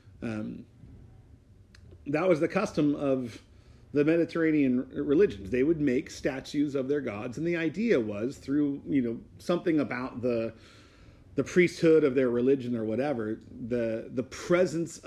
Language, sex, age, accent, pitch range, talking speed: English, male, 40-59, American, 110-145 Hz, 145 wpm